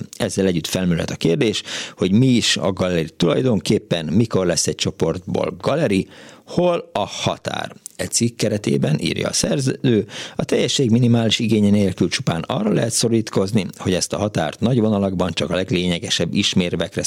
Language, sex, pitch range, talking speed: Hungarian, male, 90-105 Hz, 155 wpm